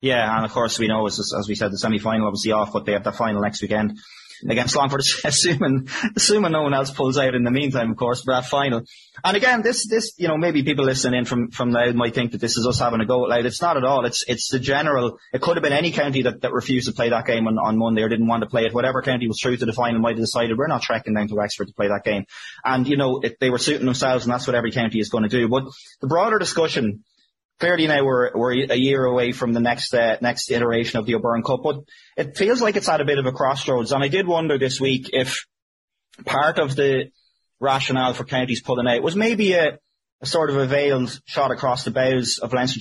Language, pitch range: English, 120-140 Hz